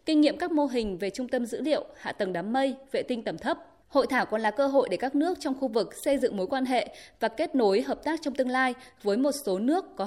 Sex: female